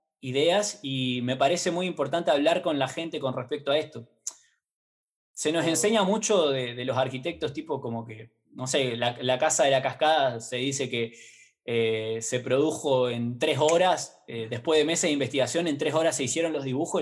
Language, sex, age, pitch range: Spanish, male, 20-39, 130-170 Hz